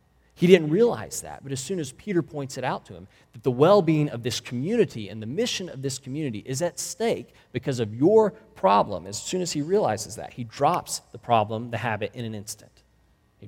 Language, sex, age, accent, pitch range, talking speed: English, male, 30-49, American, 105-150 Hz, 220 wpm